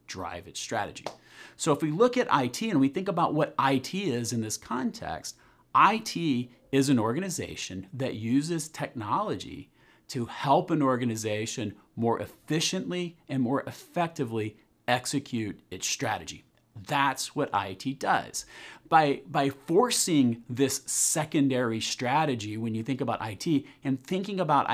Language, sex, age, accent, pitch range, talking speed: English, male, 40-59, American, 115-150 Hz, 135 wpm